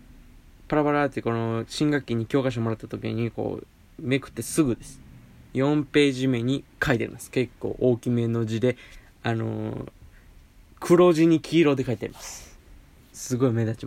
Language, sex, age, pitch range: Japanese, male, 20-39, 110-145 Hz